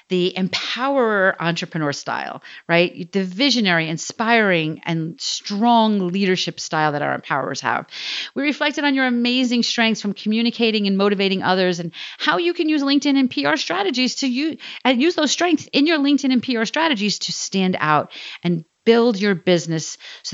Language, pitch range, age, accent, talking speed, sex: English, 185-260 Hz, 40-59, American, 165 wpm, female